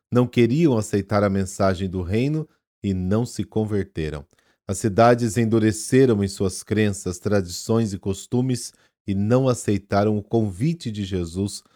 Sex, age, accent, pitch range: male, 40-59, Brazilian, 95-115 Hz